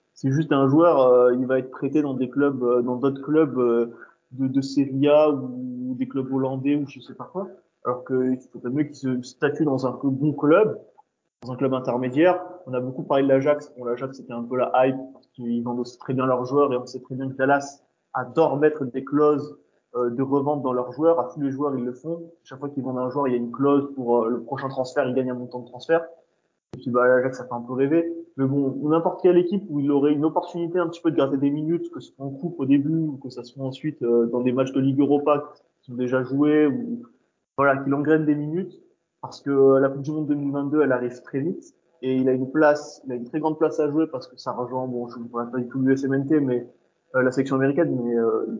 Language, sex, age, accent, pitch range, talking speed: French, male, 20-39, French, 125-150 Hz, 260 wpm